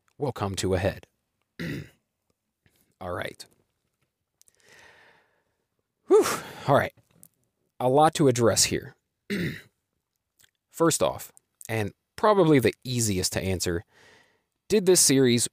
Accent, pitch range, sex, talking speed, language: American, 100-135 Hz, male, 100 wpm, English